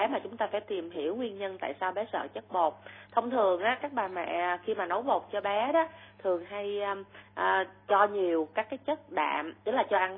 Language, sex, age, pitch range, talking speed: Vietnamese, female, 20-39, 180-235 Hz, 235 wpm